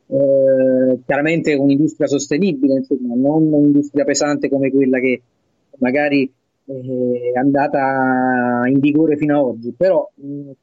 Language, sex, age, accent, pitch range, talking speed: Italian, male, 30-49, native, 130-160 Hz, 120 wpm